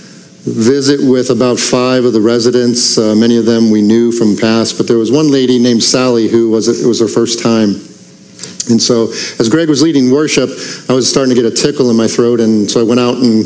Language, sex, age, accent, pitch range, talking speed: English, male, 50-69, American, 105-120 Hz, 230 wpm